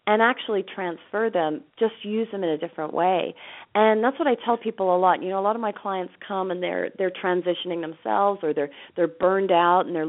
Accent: American